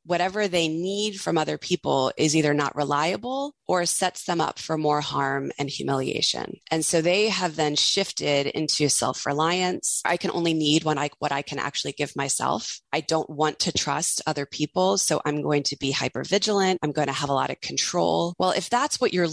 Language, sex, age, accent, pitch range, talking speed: English, female, 20-39, American, 145-185 Hz, 200 wpm